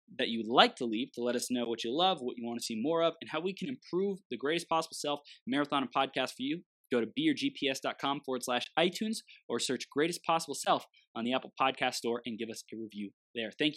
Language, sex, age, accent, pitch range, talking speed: English, male, 20-39, American, 120-185 Hz, 245 wpm